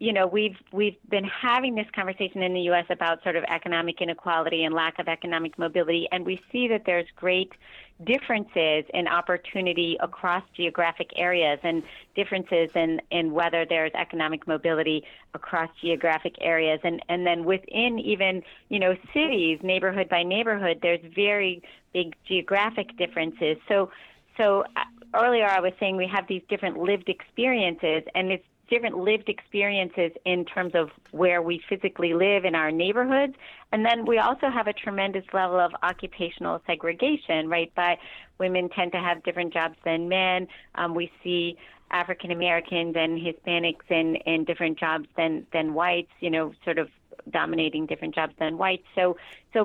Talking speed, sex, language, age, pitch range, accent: 160 wpm, female, English, 40-59, 170-195 Hz, American